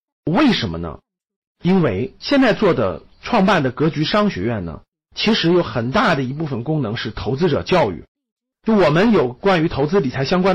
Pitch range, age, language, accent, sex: 145-225 Hz, 50-69, Chinese, native, male